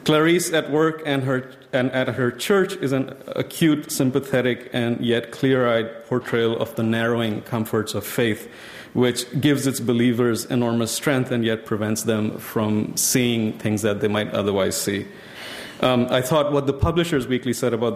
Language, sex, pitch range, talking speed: English, male, 115-135 Hz, 165 wpm